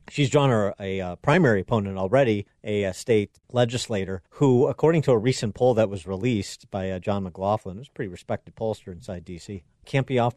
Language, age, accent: English, 40-59, American